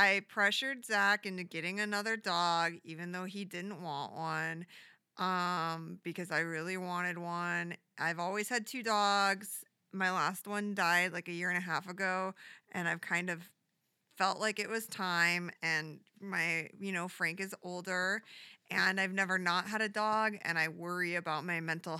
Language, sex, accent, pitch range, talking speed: English, female, American, 170-210 Hz, 175 wpm